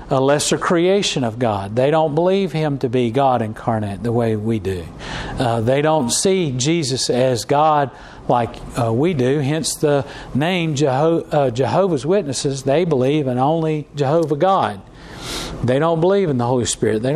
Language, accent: English, American